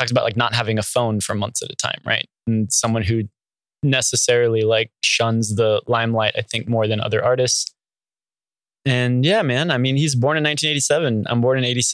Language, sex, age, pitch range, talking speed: English, male, 20-39, 110-125 Hz, 180 wpm